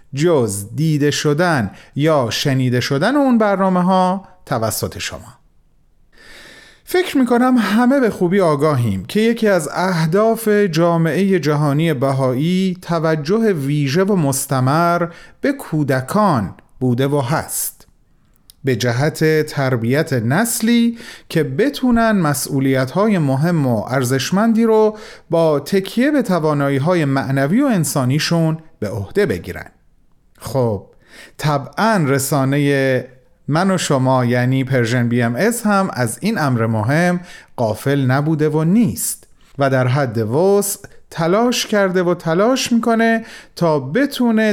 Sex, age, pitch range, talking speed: male, 40-59, 130-195 Hz, 115 wpm